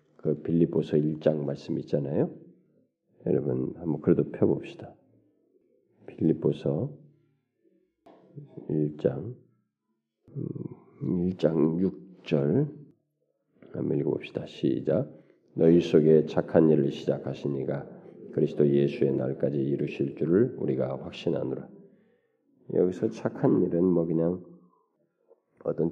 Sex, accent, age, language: male, native, 40-59, Korean